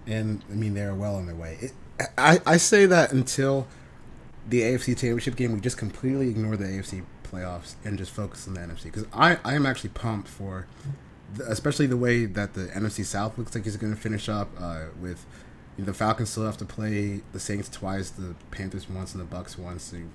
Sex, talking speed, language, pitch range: male, 220 wpm, English, 95-120 Hz